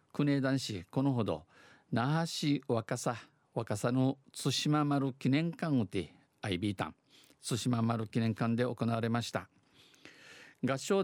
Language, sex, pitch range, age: Japanese, male, 110-135 Hz, 50-69